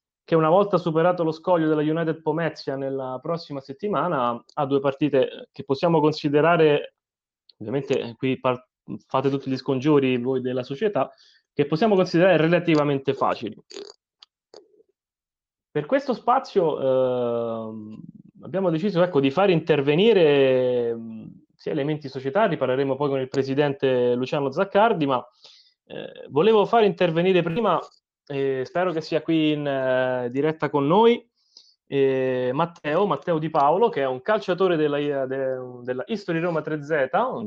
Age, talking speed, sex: 20-39, 135 wpm, male